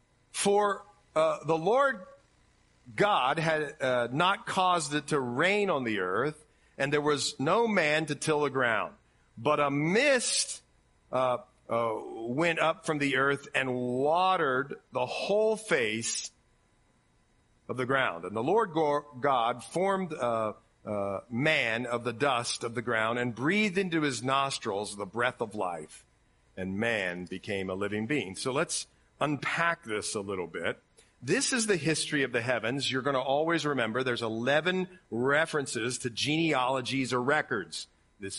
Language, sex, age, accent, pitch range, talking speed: English, male, 50-69, American, 125-180 Hz, 155 wpm